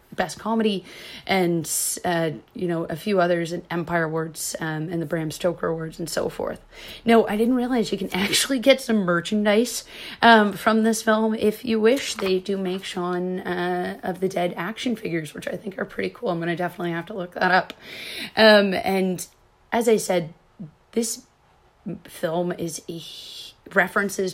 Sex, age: female, 30-49